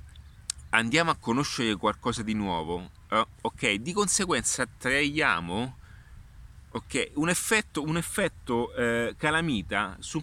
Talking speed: 110 wpm